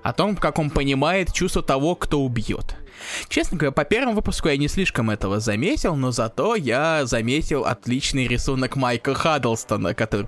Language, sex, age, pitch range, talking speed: Russian, male, 20-39, 115-160 Hz, 165 wpm